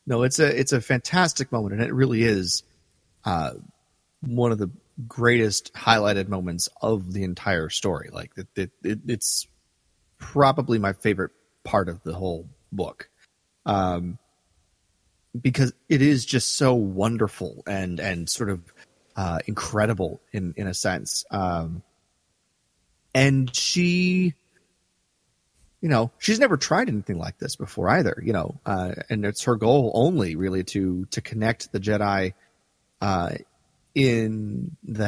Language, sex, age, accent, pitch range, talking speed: English, male, 30-49, American, 95-120 Hz, 140 wpm